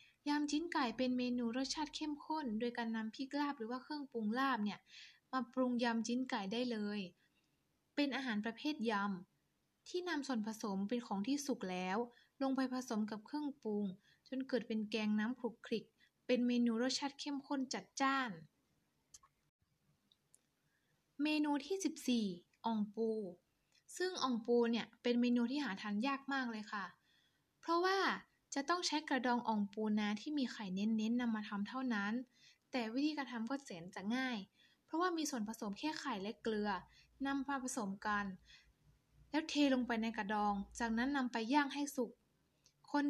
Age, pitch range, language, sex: 10-29, 220-275 Hz, Thai, female